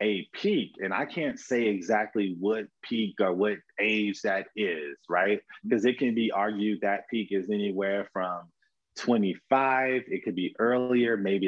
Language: English